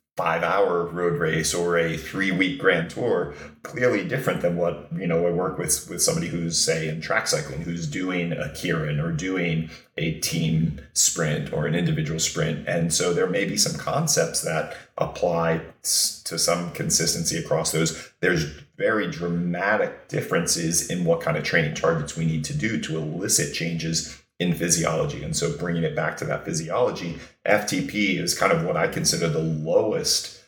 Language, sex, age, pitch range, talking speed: English, male, 30-49, 80-90 Hz, 170 wpm